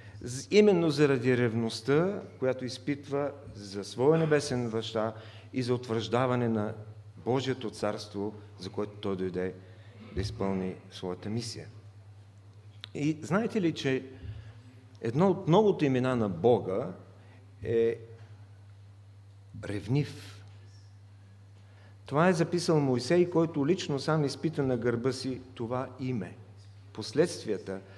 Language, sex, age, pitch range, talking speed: English, male, 50-69, 105-135 Hz, 105 wpm